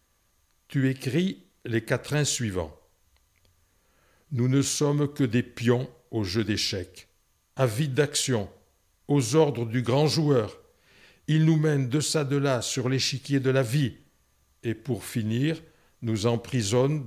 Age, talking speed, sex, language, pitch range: 60-79, 135 wpm, male, French, 100-140 Hz